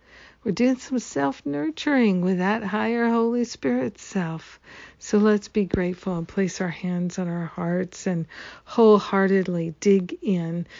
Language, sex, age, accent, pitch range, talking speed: English, female, 50-69, American, 180-200 Hz, 140 wpm